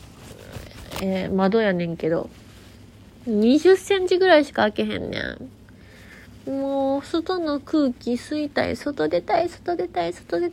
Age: 20-39